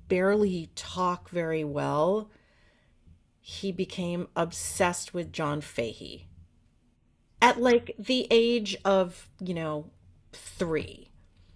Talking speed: 95 wpm